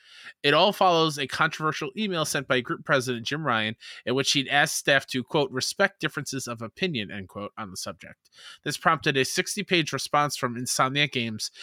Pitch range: 125-165 Hz